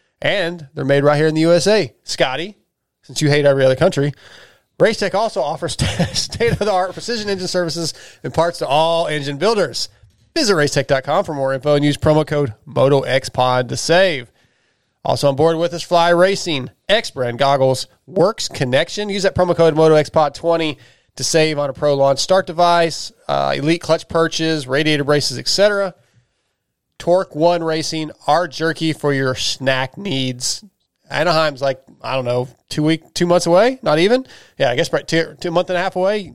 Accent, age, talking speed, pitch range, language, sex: American, 30-49, 170 wpm, 135-175 Hz, English, male